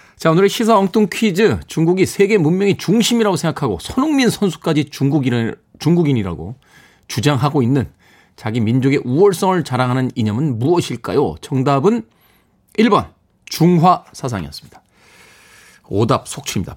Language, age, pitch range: Korean, 40-59, 110-165 Hz